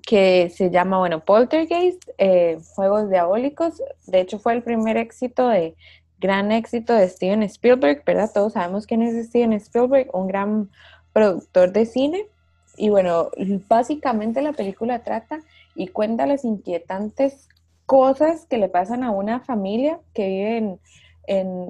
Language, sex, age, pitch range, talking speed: Spanish, female, 20-39, 185-235 Hz, 145 wpm